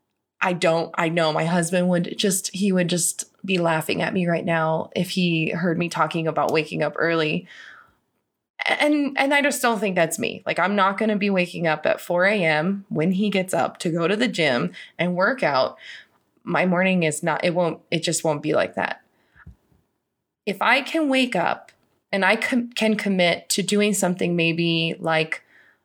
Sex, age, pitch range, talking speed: female, 20-39, 170-220 Hz, 195 wpm